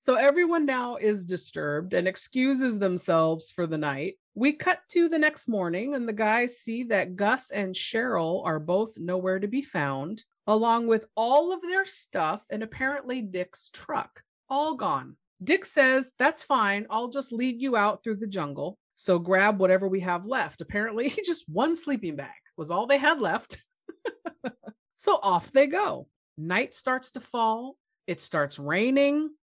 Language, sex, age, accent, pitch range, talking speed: English, female, 40-59, American, 195-285 Hz, 165 wpm